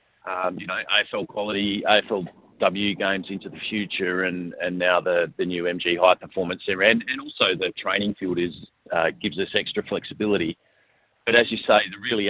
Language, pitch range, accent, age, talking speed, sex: English, 90-100 Hz, Australian, 40-59, 190 wpm, male